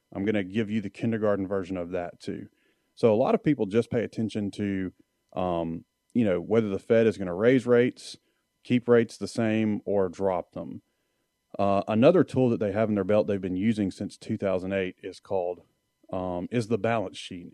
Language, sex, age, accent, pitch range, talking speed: English, male, 30-49, American, 95-115 Hz, 200 wpm